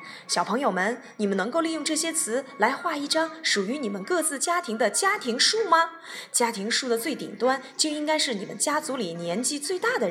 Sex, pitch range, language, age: female, 215-335 Hz, Chinese, 20-39